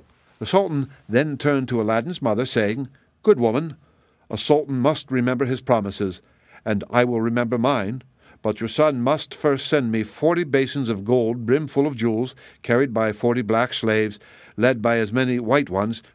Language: English